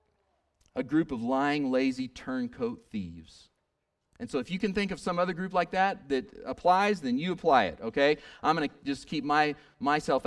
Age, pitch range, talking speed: 40-59, 155-230 Hz, 195 wpm